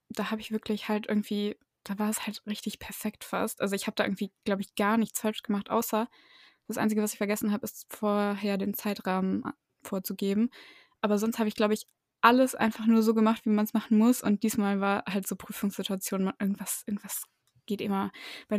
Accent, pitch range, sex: German, 195-220 Hz, female